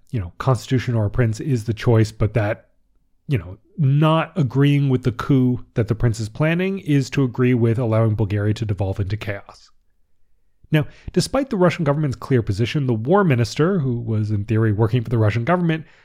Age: 30-49